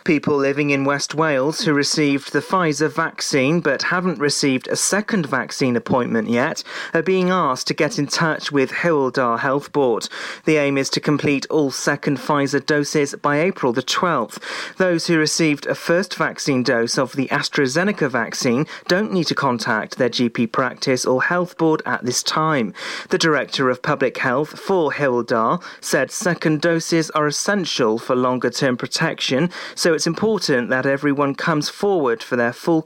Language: English